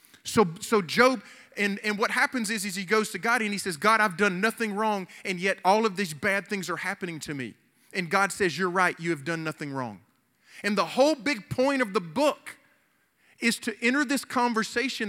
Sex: male